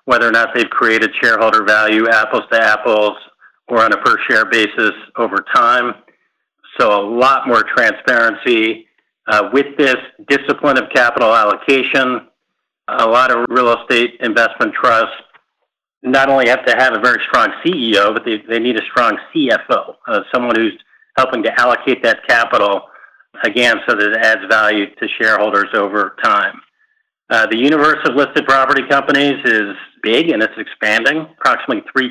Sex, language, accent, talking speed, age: male, English, American, 155 wpm, 50-69